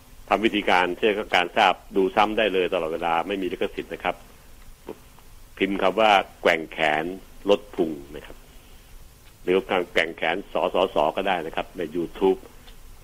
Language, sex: Thai, male